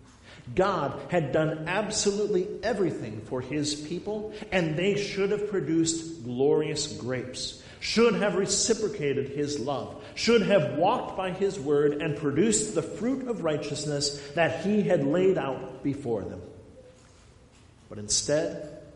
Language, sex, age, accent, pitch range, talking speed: English, male, 50-69, American, 125-170 Hz, 130 wpm